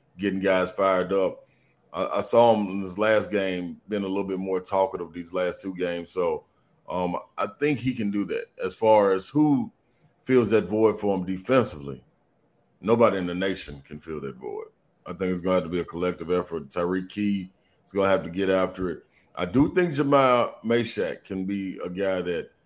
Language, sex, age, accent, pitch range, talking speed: English, male, 30-49, American, 90-110 Hz, 210 wpm